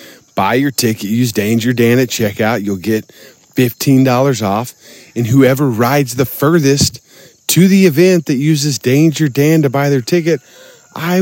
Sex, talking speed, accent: male, 155 wpm, American